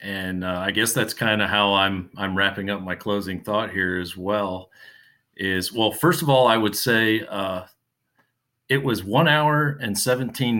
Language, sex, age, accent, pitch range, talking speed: English, male, 40-59, American, 95-120 Hz, 185 wpm